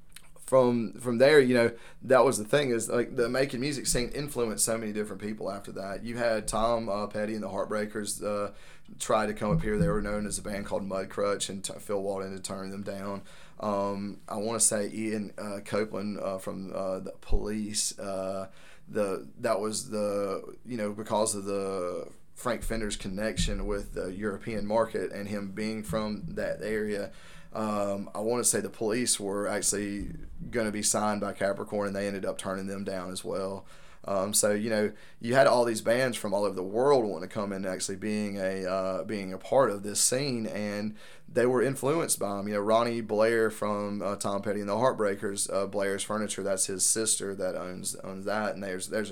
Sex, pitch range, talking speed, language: male, 100-110 Hz, 205 wpm, English